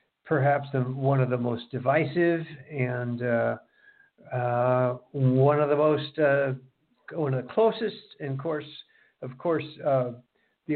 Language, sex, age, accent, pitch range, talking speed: English, male, 60-79, American, 130-185 Hz, 145 wpm